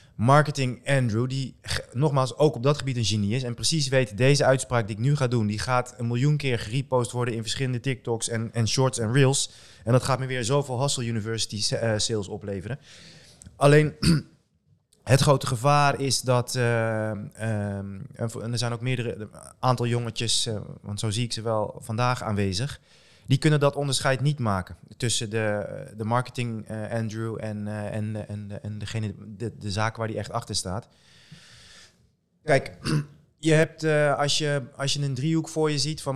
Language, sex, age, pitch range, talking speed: Dutch, male, 20-39, 110-135 Hz, 185 wpm